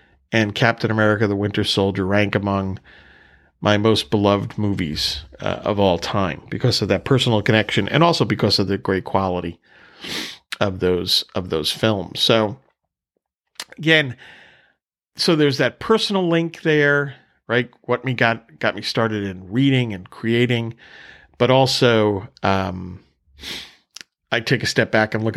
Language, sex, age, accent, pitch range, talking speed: English, male, 40-59, American, 100-125 Hz, 145 wpm